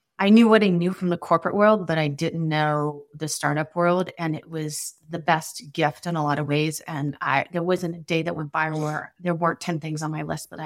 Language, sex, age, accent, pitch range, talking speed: English, female, 30-49, American, 155-175 Hz, 255 wpm